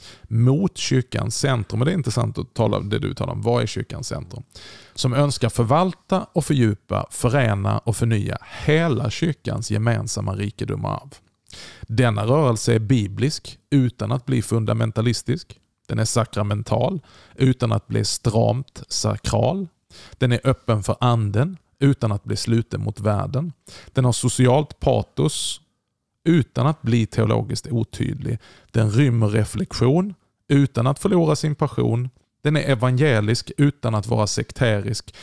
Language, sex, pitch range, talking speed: Swedish, male, 110-135 Hz, 140 wpm